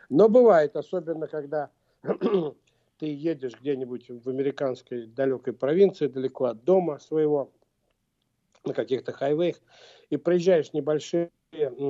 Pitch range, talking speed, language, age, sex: 135-175 Hz, 105 wpm, Russian, 60-79, male